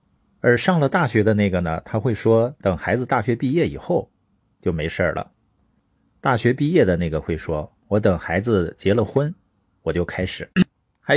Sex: male